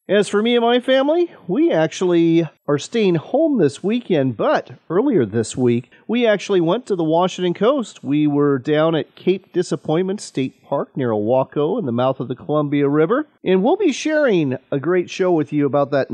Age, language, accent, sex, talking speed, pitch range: 40-59, English, American, male, 195 wpm, 140-200 Hz